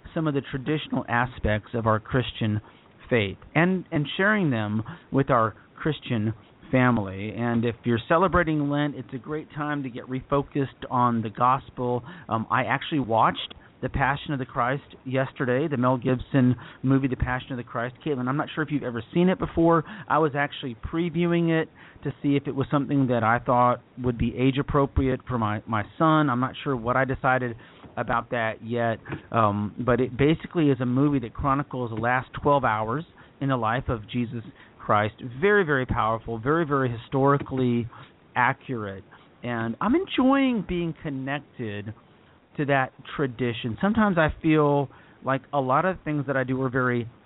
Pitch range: 120-145 Hz